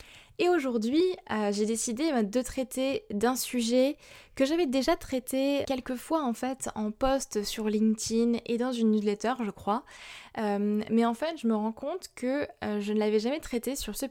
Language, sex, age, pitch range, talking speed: French, female, 20-39, 215-255 Hz, 190 wpm